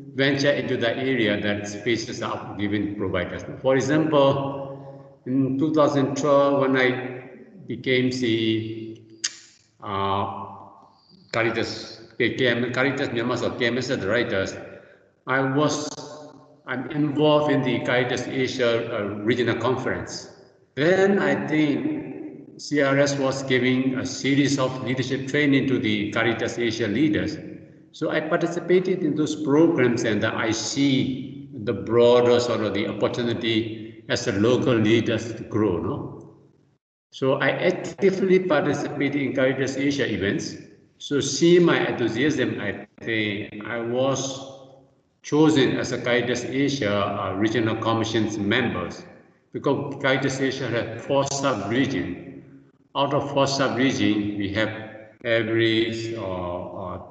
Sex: male